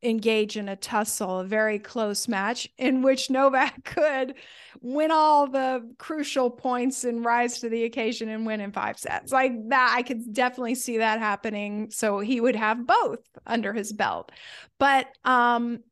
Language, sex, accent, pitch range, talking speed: English, female, American, 220-260 Hz, 170 wpm